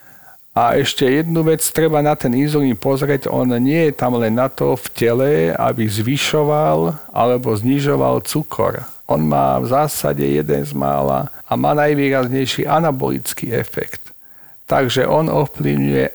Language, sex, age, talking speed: Slovak, male, 50-69, 140 wpm